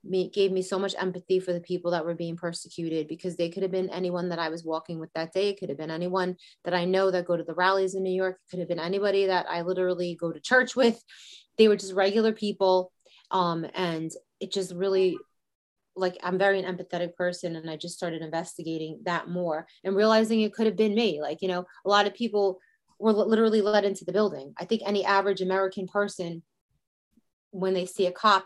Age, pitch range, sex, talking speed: 30-49, 175-195 Hz, female, 230 wpm